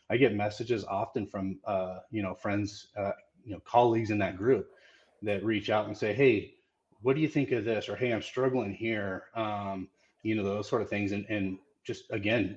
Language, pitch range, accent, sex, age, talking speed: English, 105-125 Hz, American, male, 30-49, 210 wpm